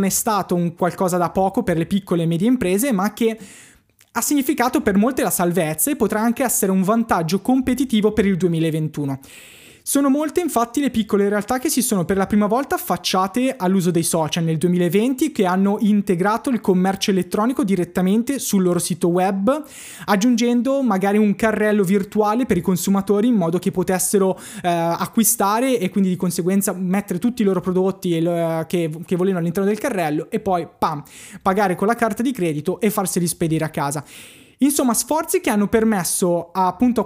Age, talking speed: 20-39, 185 wpm